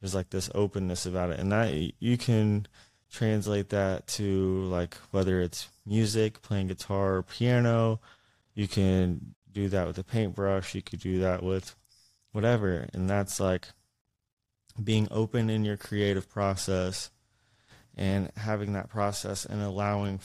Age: 20-39